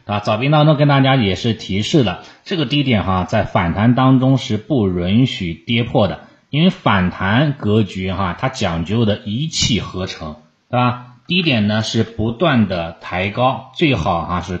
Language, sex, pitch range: Chinese, male, 95-125 Hz